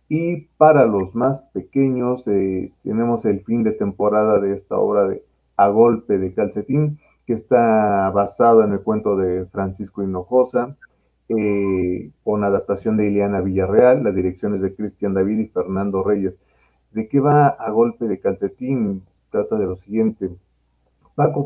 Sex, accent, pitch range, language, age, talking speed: male, Mexican, 100-130 Hz, Spanish, 40-59, 150 wpm